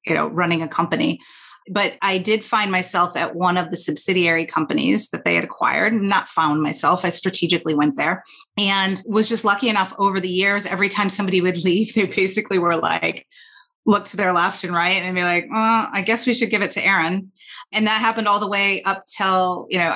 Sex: female